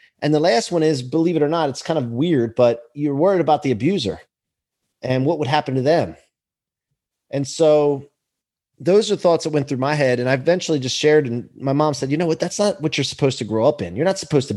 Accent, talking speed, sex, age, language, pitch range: American, 245 wpm, male, 30-49, English, 140-190 Hz